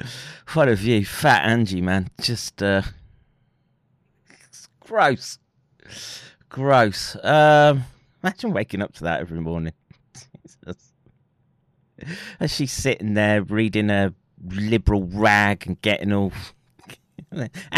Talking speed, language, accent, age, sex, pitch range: 100 wpm, English, British, 30-49, male, 95-130 Hz